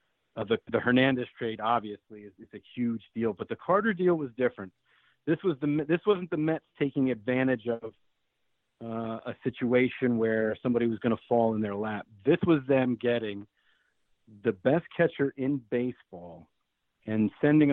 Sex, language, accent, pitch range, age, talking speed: male, English, American, 110-135 Hz, 40-59, 170 wpm